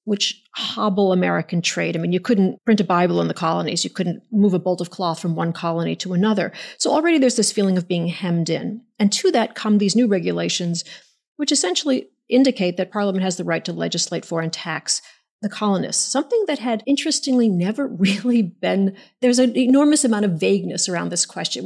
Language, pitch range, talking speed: English, 185-230 Hz, 200 wpm